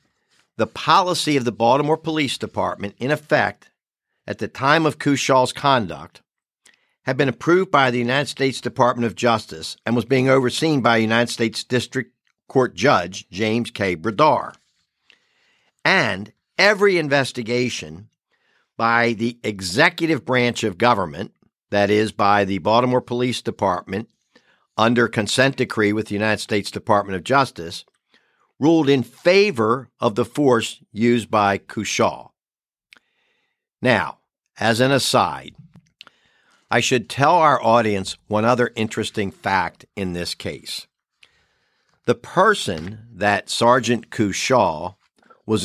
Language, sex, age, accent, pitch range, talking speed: English, male, 50-69, American, 105-130 Hz, 125 wpm